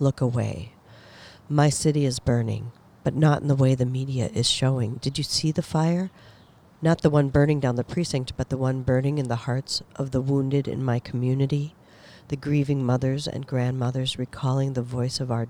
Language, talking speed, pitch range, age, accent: English, 195 wpm, 120-145 Hz, 50-69, American